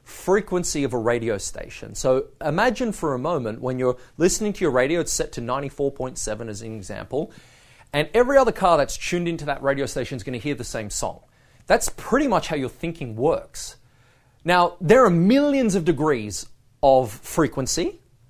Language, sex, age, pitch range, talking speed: English, male, 30-49, 125-170 Hz, 185 wpm